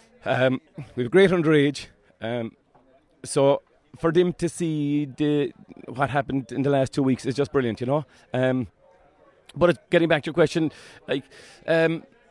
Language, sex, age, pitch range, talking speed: English, male, 30-49, 125-150 Hz, 155 wpm